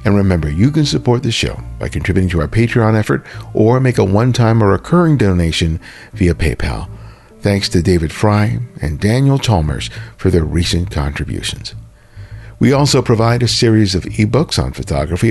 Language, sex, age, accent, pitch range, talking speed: English, male, 50-69, American, 90-115 Hz, 165 wpm